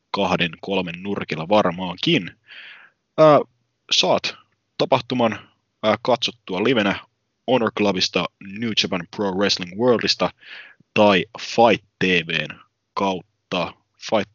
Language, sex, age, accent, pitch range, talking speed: English, male, 20-39, Finnish, 90-105 Hz, 90 wpm